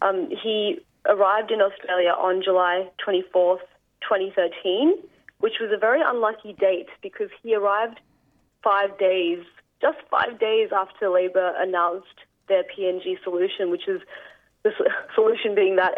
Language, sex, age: English, female, 30-49